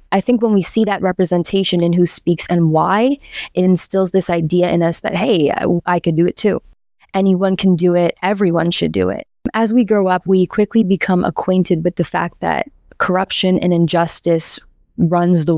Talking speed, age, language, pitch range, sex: 195 wpm, 20-39, English, 170-195 Hz, female